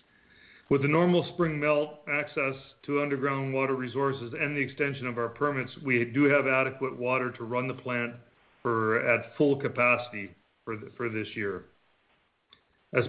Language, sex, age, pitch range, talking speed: English, male, 40-59, 120-145 Hz, 160 wpm